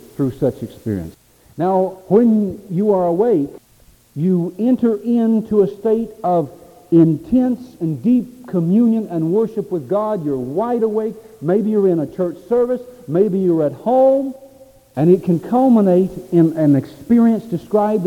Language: English